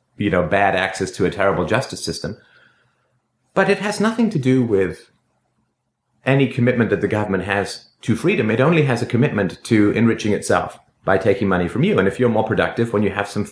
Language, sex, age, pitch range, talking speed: English, male, 30-49, 100-130 Hz, 205 wpm